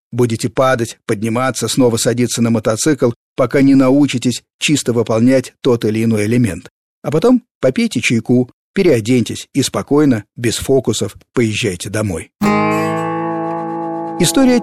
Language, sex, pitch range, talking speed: Russian, male, 115-145 Hz, 115 wpm